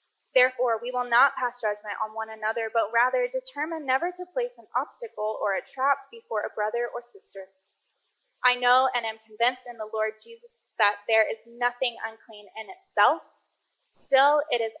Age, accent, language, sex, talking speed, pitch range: 10-29, American, English, female, 180 wpm, 225-330 Hz